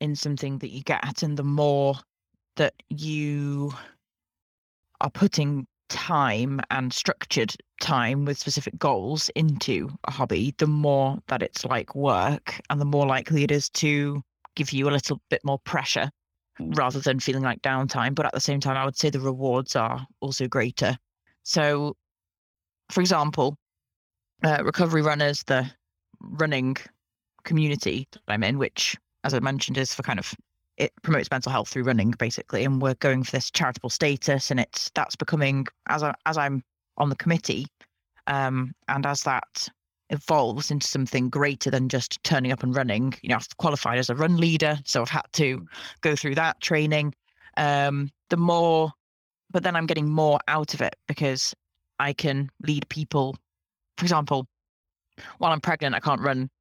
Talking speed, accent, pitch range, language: 165 wpm, British, 130-150 Hz, English